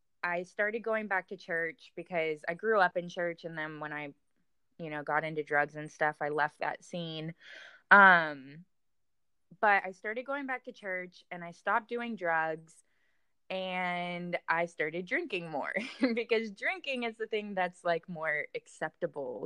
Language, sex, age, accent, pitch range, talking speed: English, female, 20-39, American, 155-195 Hz, 165 wpm